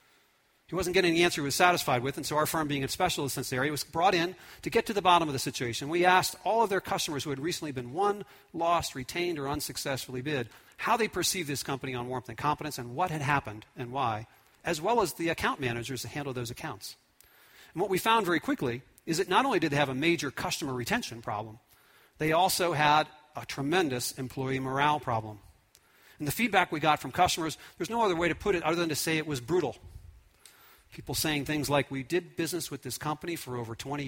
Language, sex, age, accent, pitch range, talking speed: English, male, 40-59, American, 130-165 Hz, 230 wpm